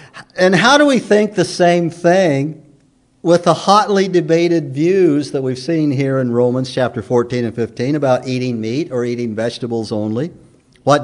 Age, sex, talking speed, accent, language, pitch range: 50-69, male, 170 wpm, American, English, 130-165 Hz